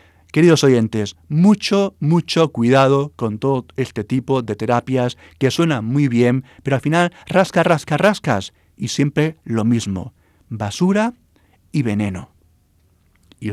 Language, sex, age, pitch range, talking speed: Spanish, male, 40-59, 110-155 Hz, 130 wpm